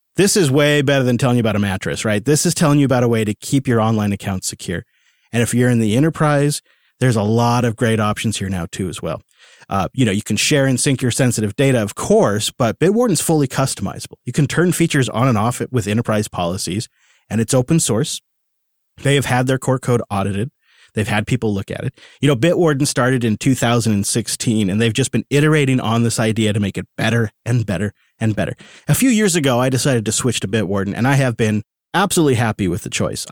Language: English